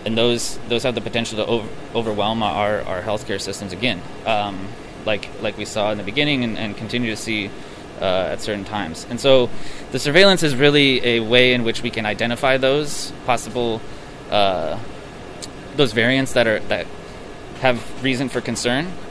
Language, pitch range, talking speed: English, 110-135 Hz, 175 wpm